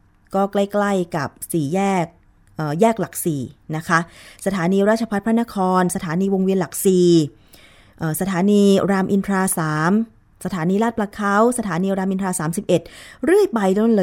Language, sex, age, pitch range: Thai, female, 20-39, 155-205 Hz